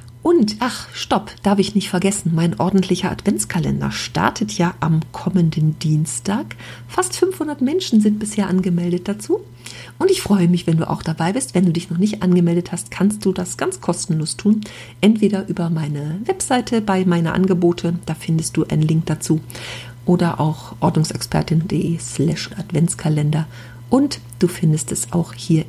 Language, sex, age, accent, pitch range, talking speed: German, female, 50-69, German, 155-200 Hz, 160 wpm